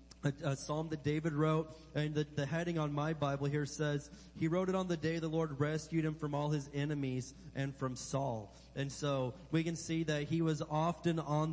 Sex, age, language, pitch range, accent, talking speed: male, 30-49, English, 135-160 Hz, American, 220 wpm